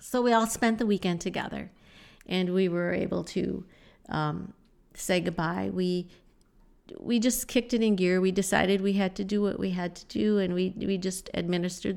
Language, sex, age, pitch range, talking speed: English, female, 50-69, 180-205 Hz, 190 wpm